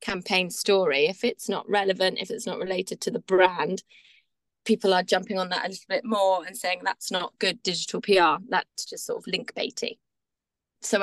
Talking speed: 195 wpm